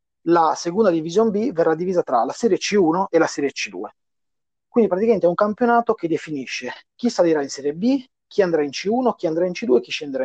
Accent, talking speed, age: native, 215 wpm, 30-49